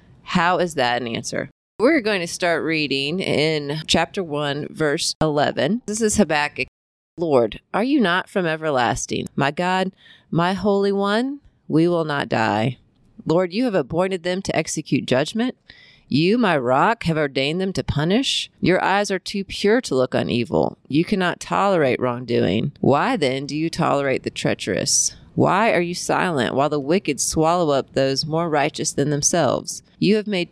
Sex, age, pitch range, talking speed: female, 30-49, 140-180 Hz, 170 wpm